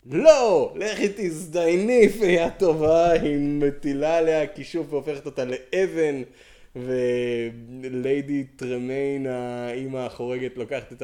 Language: Hebrew